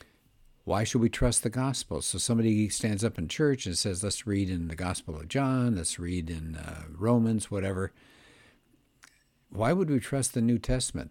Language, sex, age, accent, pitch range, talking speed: English, male, 60-79, American, 90-125 Hz, 185 wpm